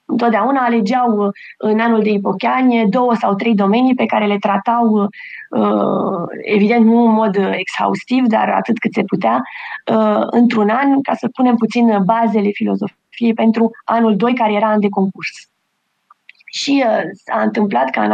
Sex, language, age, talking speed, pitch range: female, Romanian, 20-39, 150 wpm, 215-255 Hz